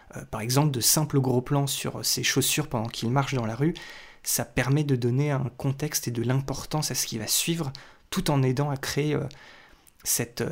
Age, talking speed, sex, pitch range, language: 20-39, 200 wpm, male, 125-145 Hz, French